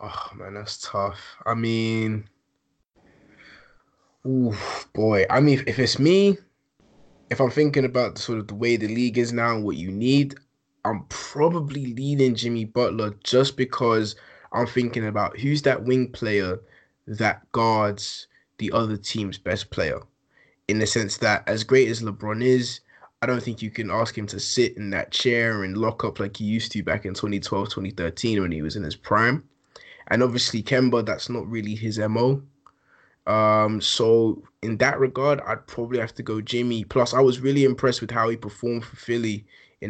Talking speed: 180 wpm